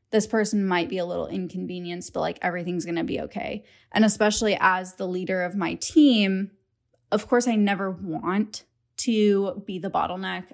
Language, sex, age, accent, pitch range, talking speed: English, female, 10-29, American, 180-210 Hz, 175 wpm